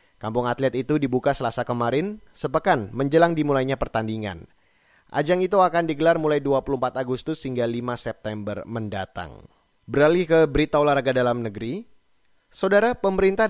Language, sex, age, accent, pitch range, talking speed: Indonesian, male, 30-49, native, 120-150 Hz, 130 wpm